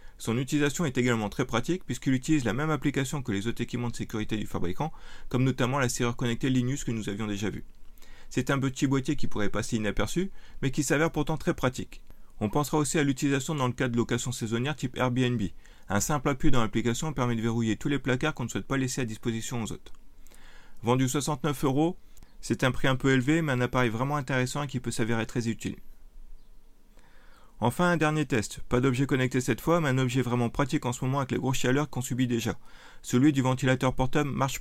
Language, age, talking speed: French, 30-49, 220 wpm